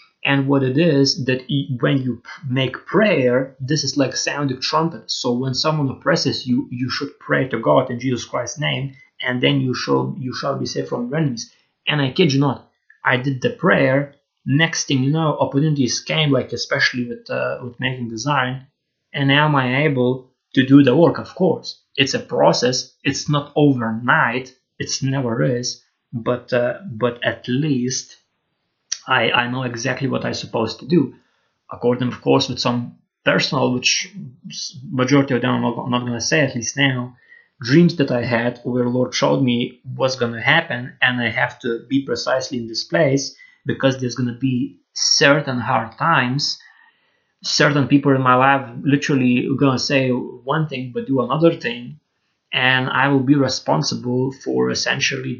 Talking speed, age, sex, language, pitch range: 175 wpm, 30-49, male, English, 125-140 Hz